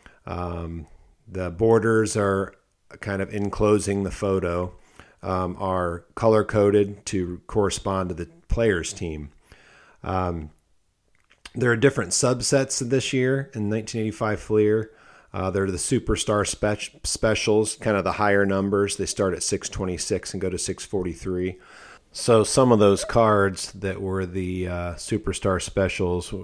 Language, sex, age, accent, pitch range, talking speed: English, male, 40-59, American, 85-100 Hz, 135 wpm